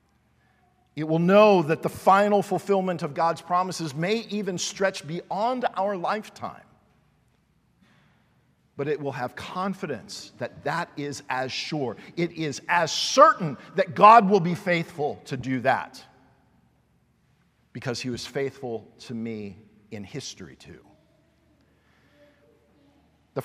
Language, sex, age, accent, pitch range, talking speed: English, male, 50-69, American, 125-170 Hz, 125 wpm